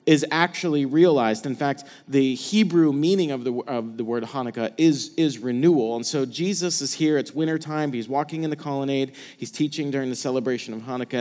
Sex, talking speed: male, 195 wpm